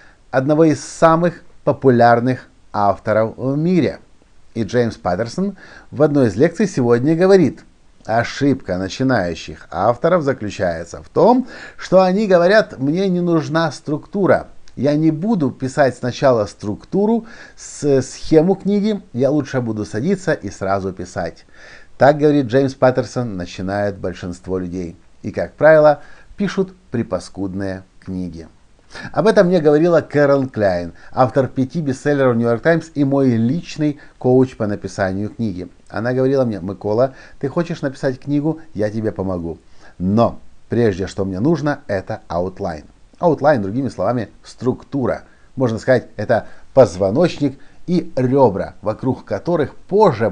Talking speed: 130 wpm